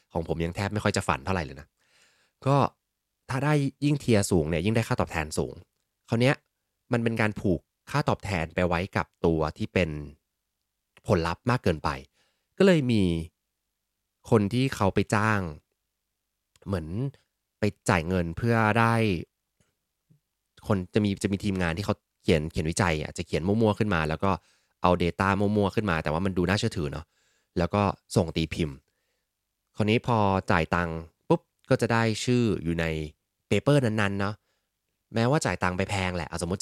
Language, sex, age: English, male, 20-39